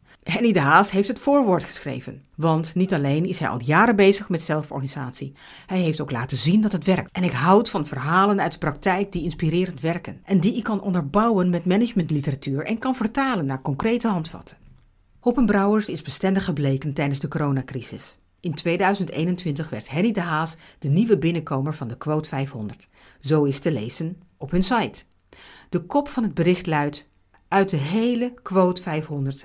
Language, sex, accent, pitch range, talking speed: Dutch, female, Dutch, 145-195 Hz, 175 wpm